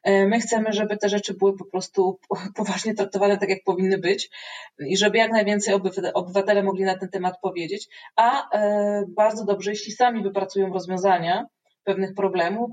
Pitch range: 185-210 Hz